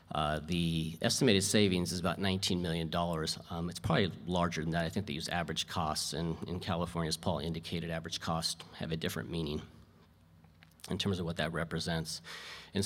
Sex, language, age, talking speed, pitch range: male, English, 40-59, 185 wpm, 80-100 Hz